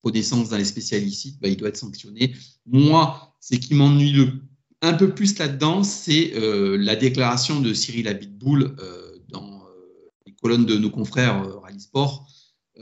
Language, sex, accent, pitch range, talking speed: French, male, French, 115-145 Hz, 175 wpm